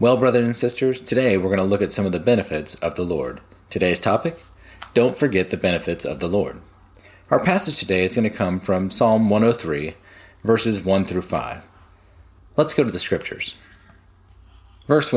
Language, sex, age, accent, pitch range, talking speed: English, male, 30-49, American, 95-125 Hz, 180 wpm